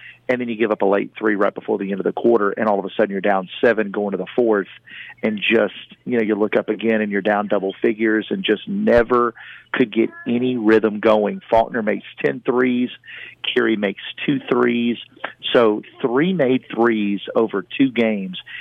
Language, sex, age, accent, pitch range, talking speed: English, male, 40-59, American, 105-120 Hz, 205 wpm